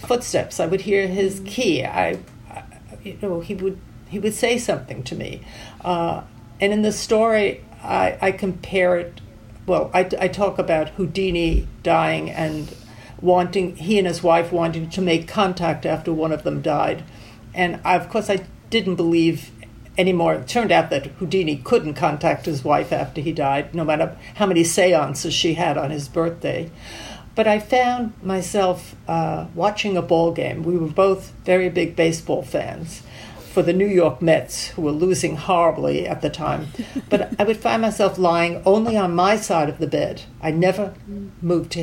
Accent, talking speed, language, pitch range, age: American, 180 wpm, English, 160-195 Hz, 60-79